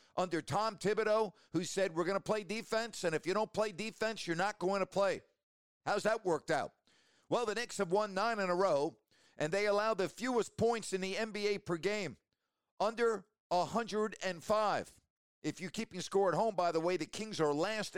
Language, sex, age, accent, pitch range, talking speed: English, male, 50-69, American, 170-215 Hz, 200 wpm